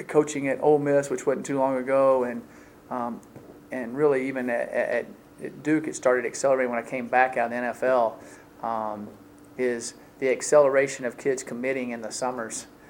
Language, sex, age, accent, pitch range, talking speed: English, male, 40-59, American, 125-140 Hz, 175 wpm